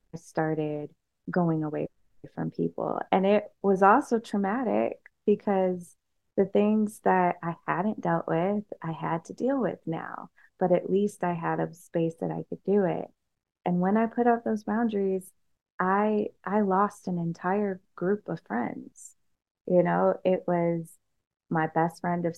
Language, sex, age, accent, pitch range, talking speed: English, female, 20-39, American, 165-195 Hz, 160 wpm